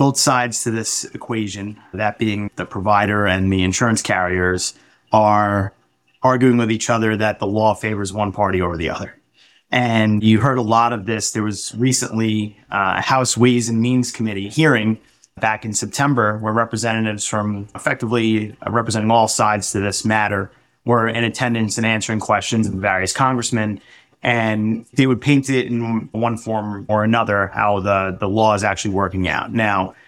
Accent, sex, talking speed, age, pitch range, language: American, male, 170 wpm, 30-49, 105-130 Hz, English